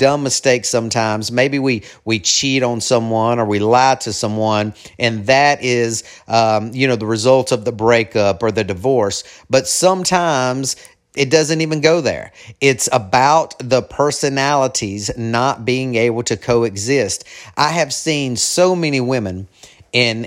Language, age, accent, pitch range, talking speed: English, 40-59, American, 115-145 Hz, 150 wpm